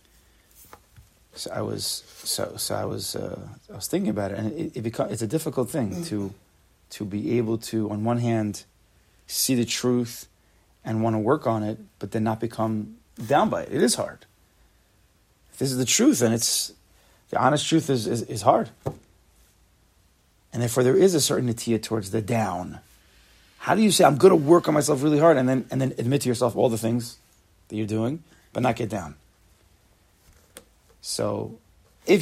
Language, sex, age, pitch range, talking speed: English, male, 30-49, 95-130 Hz, 190 wpm